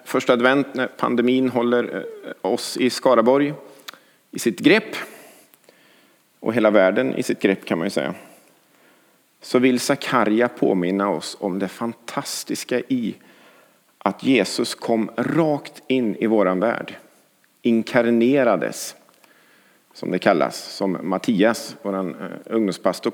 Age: 50-69